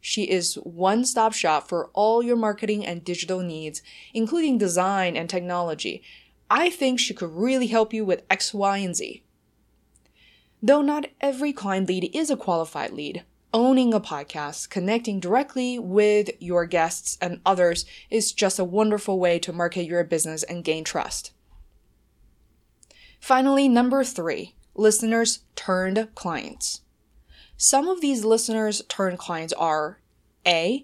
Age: 20-39